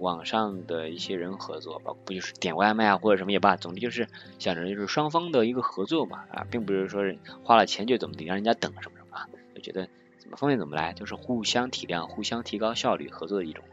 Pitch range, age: 90-130 Hz, 20-39